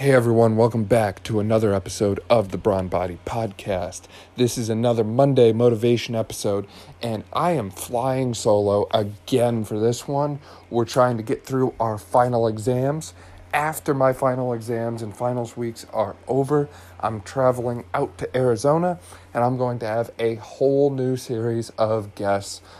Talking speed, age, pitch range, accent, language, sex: 160 wpm, 40-59, 100-120 Hz, American, English, male